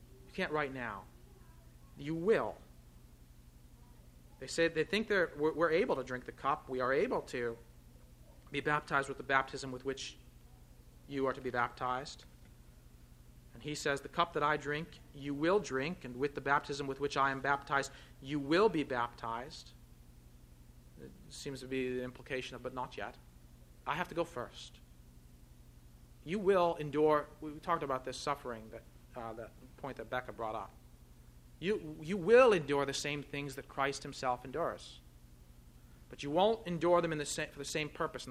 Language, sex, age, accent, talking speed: English, male, 40-59, American, 175 wpm